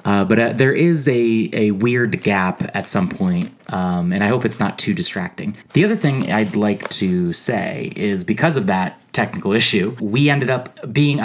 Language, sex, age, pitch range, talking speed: English, male, 30-49, 100-170 Hz, 195 wpm